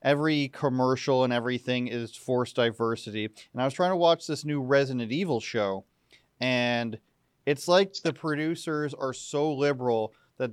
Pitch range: 125-150 Hz